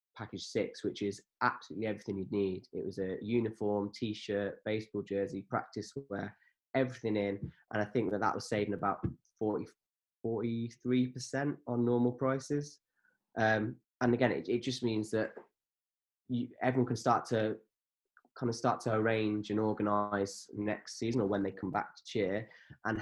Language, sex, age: English, male, 10-29